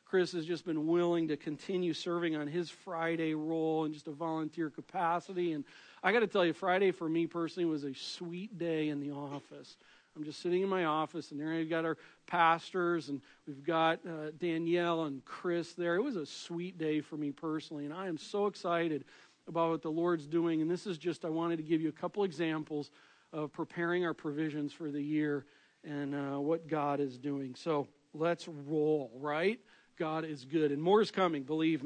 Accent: American